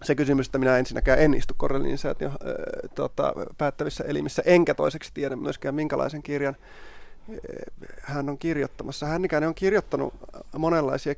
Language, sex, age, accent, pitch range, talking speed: Finnish, male, 30-49, native, 130-155 Hz, 135 wpm